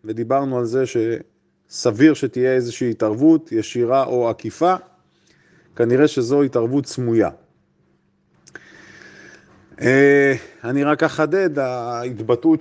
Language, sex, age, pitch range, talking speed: Hebrew, male, 30-49, 125-165 Hz, 85 wpm